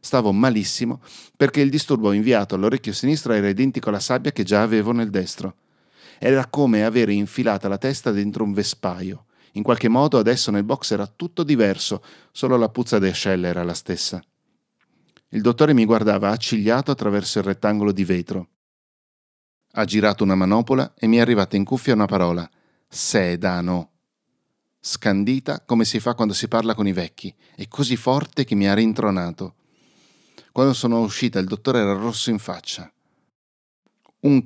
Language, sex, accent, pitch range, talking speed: Italian, male, native, 100-130 Hz, 160 wpm